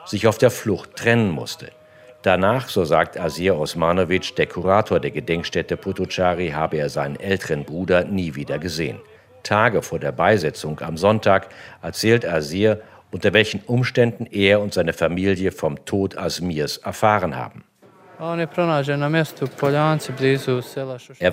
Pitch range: 90-110 Hz